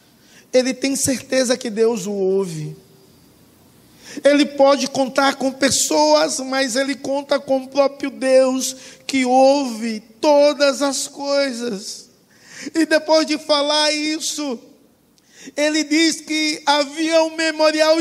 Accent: Brazilian